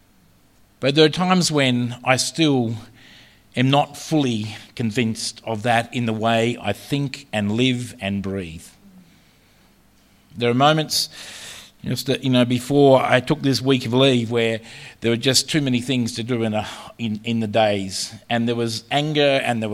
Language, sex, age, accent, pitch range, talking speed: English, male, 50-69, Australian, 115-145 Hz, 175 wpm